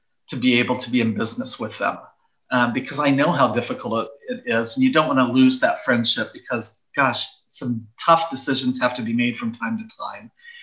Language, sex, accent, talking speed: English, male, American, 210 wpm